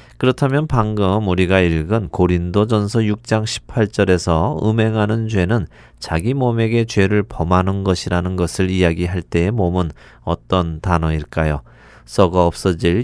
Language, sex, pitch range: Korean, male, 85-110 Hz